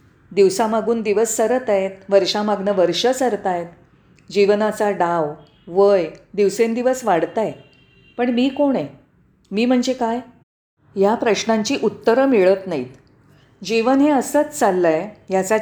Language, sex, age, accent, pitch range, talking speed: Marathi, female, 40-59, native, 190-245 Hz, 125 wpm